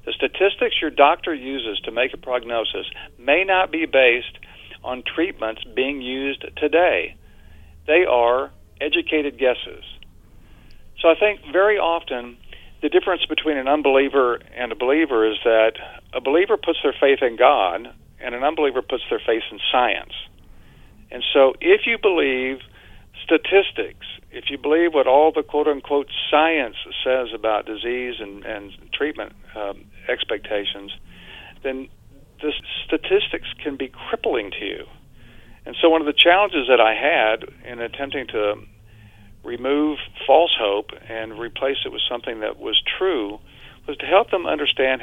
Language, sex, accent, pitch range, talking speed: English, male, American, 110-155 Hz, 145 wpm